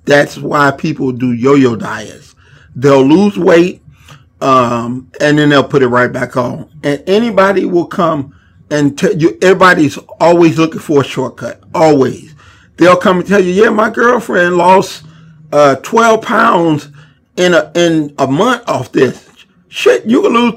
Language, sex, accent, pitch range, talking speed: English, male, American, 140-195 Hz, 160 wpm